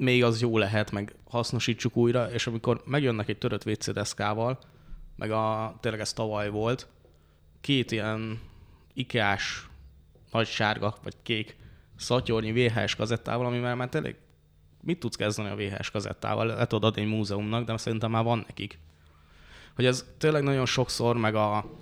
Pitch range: 105-120 Hz